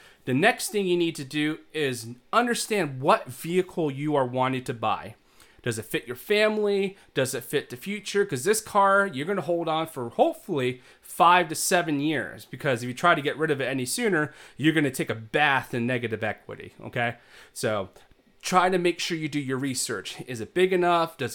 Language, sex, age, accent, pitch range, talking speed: English, male, 30-49, American, 130-170 Hz, 205 wpm